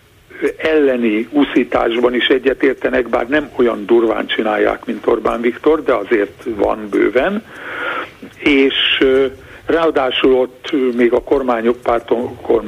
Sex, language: male, Hungarian